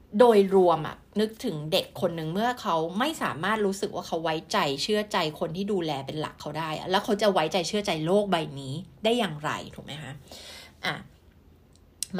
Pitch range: 165-215 Hz